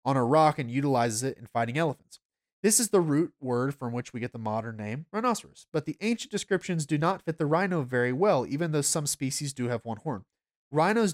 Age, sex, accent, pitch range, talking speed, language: 30-49, male, American, 130-175 Hz, 225 wpm, English